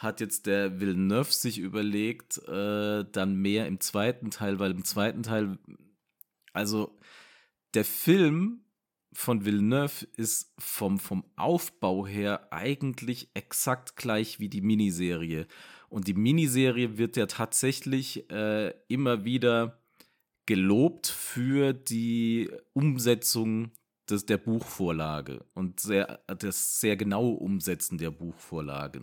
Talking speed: 110 wpm